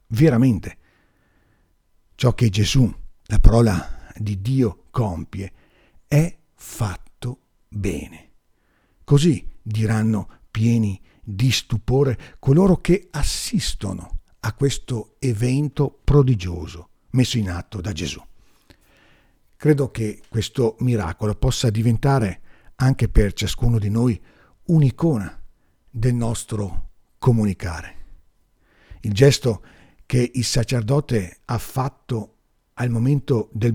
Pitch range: 95-130 Hz